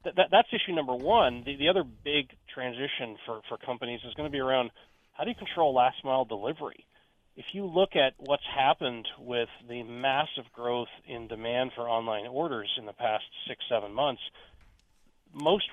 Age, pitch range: 30-49, 120-140 Hz